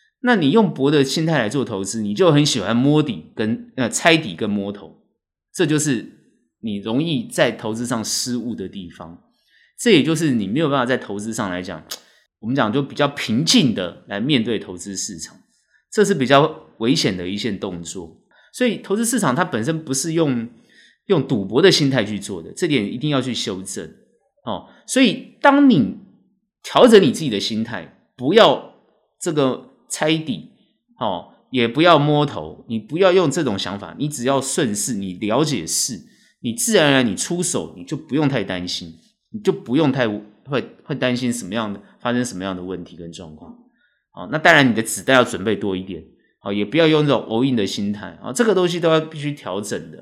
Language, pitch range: Chinese, 100-170 Hz